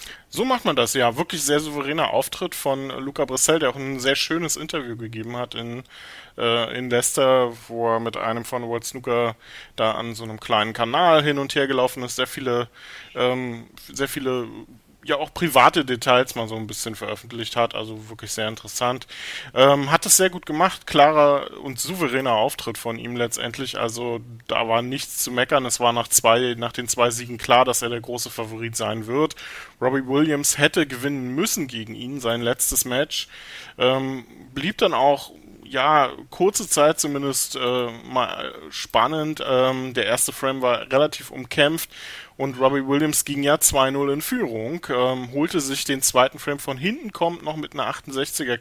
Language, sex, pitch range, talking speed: German, male, 120-145 Hz, 180 wpm